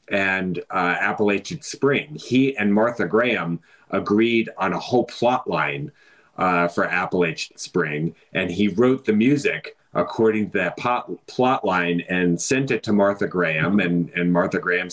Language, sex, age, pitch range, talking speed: English, male, 30-49, 100-125 Hz, 155 wpm